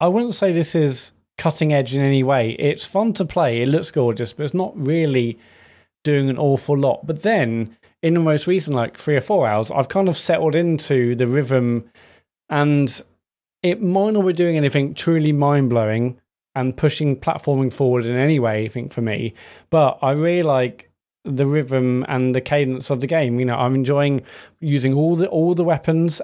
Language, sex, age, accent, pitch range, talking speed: English, male, 20-39, British, 125-155 Hz, 195 wpm